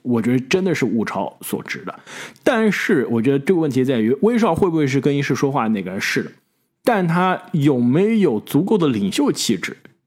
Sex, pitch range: male, 135-195 Hz